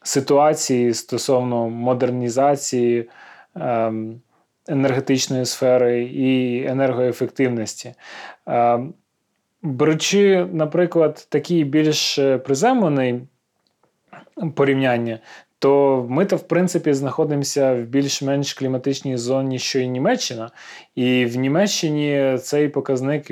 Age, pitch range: 20-39, 130-160 Hz